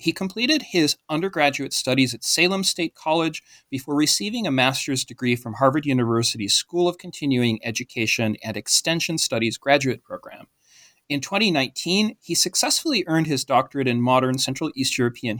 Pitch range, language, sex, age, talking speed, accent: 125-175 Hz, English, male, 40-59, 150 wpm, American